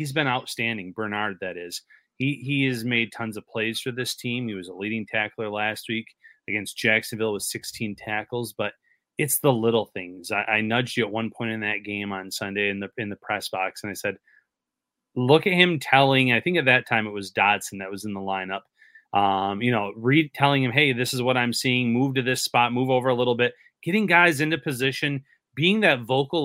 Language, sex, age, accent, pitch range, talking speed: English, male, 30-49, American, 110-135 Hz, 225 wpm